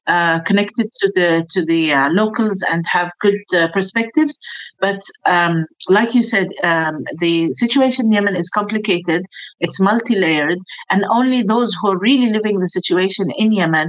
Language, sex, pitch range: English, female, 180-225 Hz